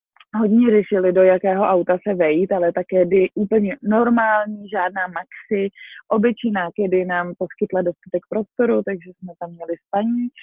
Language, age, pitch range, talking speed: Czech, 20-39, 185-225 Hz, 145 wpm